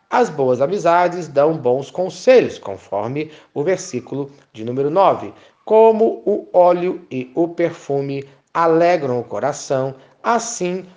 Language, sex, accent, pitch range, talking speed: Portuguese, male, Brazilian, 140-195 Hz, 120 wpm